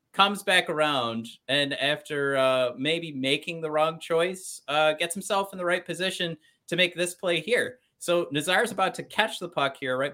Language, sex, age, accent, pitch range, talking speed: English, male, 30-49, American, 140-195 Hz, 190 wpm